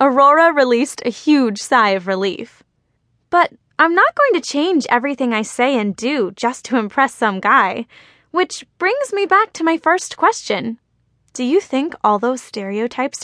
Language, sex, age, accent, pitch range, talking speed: English, female, 10-29, American, 215-290 Hz, 170 wpm